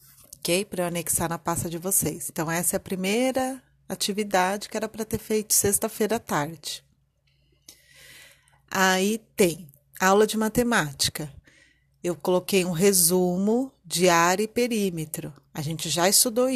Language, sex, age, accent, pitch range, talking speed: Portuguese, female, 30-49, Brazilian, 170-215 Hz, 140 wpm